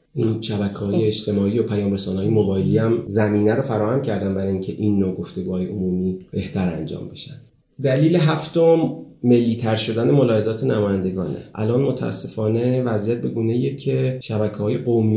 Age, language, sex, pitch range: 30-49, Persian, male, 100-125 Hz